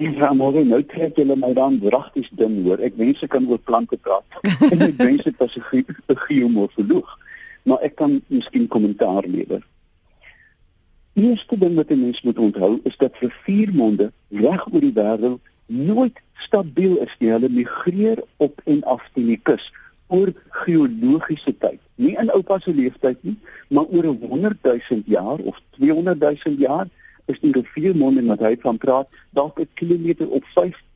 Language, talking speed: German, 165 wpm